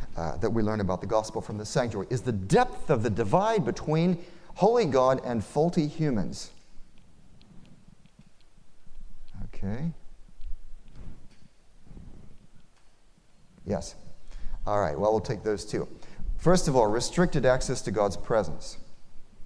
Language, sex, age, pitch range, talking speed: English, male, 40-59, 100-155 Hz, 120 wpm